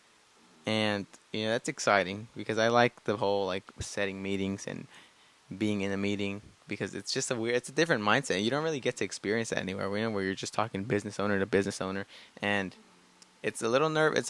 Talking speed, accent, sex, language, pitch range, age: 220 wpm, American, male, English, 100-120 Hz, 20-39